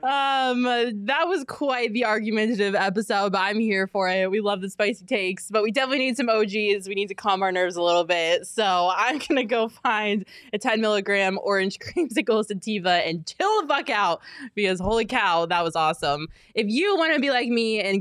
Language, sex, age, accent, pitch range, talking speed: English, female, 20-39, American, 195-255 Hz, 205 wpm